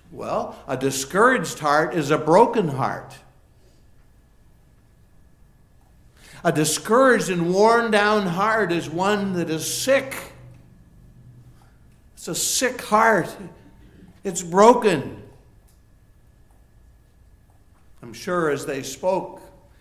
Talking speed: 90 wpm